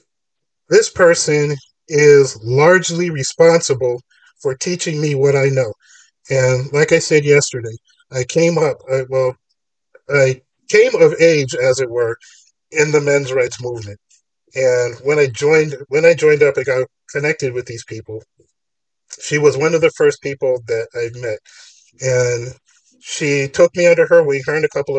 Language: English